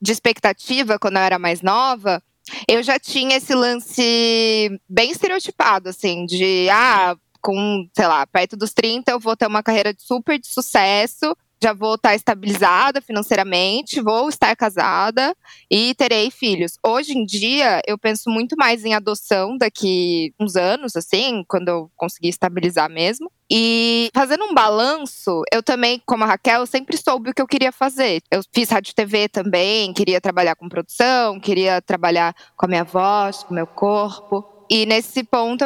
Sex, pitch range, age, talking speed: female, 185-240 Hz, 20-39, 165 wpm